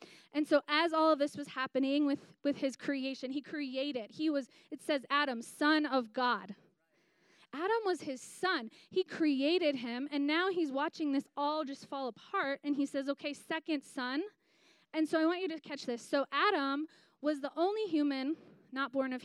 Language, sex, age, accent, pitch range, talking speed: English, female, 20-39, American, 270-320 Hz, 190 wpm